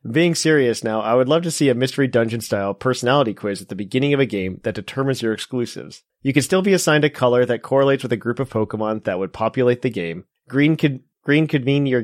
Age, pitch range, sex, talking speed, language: 30-49, 110-135 Hz, male, 240 wpm, English